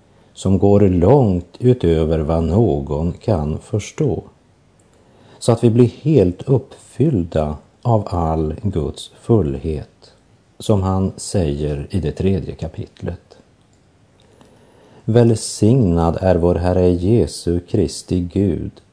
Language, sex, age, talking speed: Swedish, male, 50-69, 100 wpm